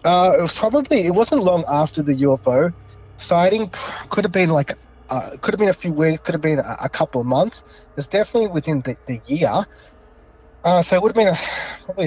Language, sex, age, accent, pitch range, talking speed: English, male, 20-39, Australian, 120-155 Hz, 220 wpm